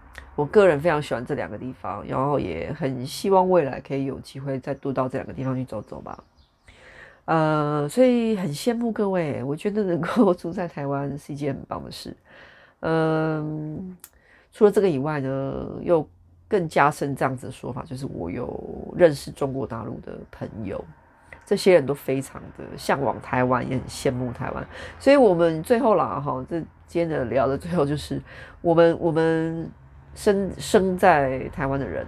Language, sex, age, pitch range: Chinese, female, 30-49, 135-195 Hz